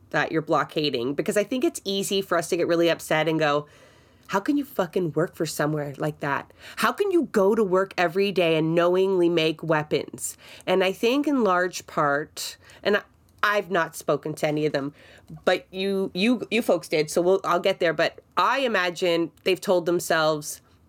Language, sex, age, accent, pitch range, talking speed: English, female, 30-49, American, 155-190 Hz, 195 wpm